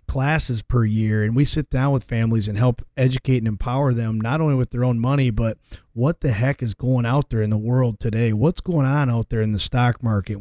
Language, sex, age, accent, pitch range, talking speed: English, male, 30-49, American, 115-140 Hz, 240 wpm